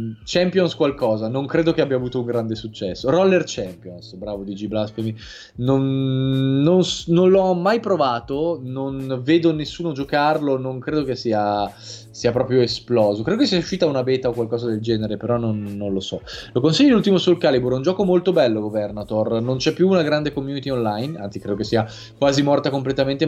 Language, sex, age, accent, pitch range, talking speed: Italian, male, 20-39, native, 110-140 Hz, 190 wpm